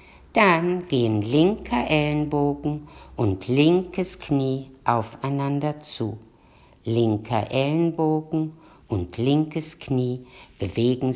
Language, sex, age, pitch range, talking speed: German, female, 50-69, 115-155 Hz, 80 wpm